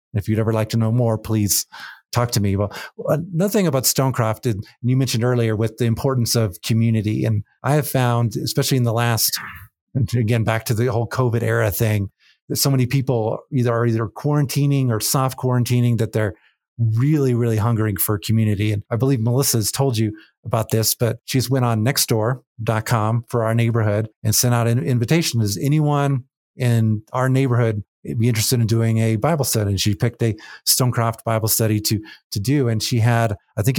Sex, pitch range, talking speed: male, 110-130 Hz, 190 wpm